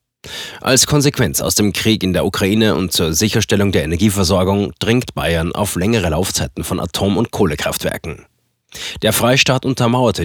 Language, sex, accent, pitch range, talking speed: German, male, German, 90-115 Hz, 145 wpm